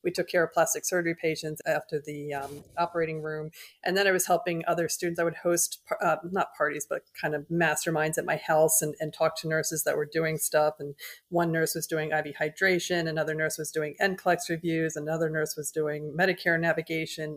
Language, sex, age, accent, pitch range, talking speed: English, female, 30-49, American, 160-180 Hz, 205 wpm